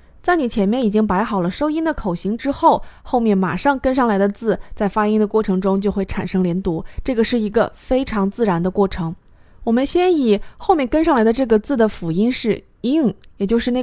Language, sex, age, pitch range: Chinese, female, 20-39, 195-255 Hz